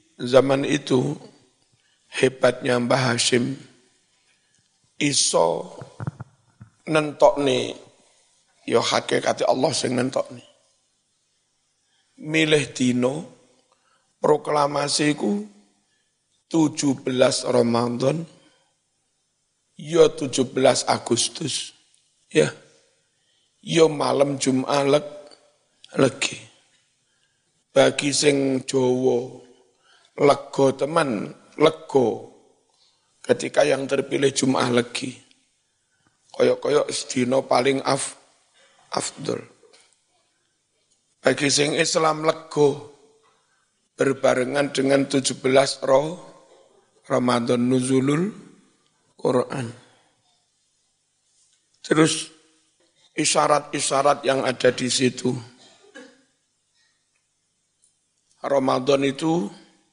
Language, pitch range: Indonesian, 125-150 Hz